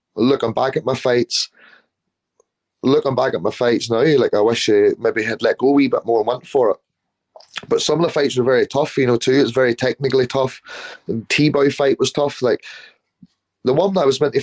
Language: English